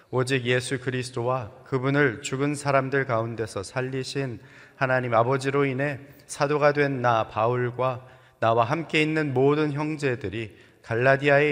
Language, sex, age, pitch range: Korean, male, 30-49, 115-140 Hz